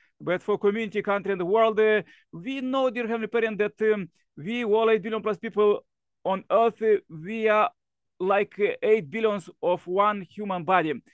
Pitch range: 180-210 Hz